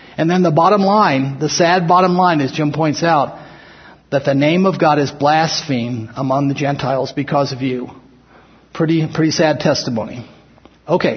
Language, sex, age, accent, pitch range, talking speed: English, male, 50-69, American, 140-180 Hz, 165 wpm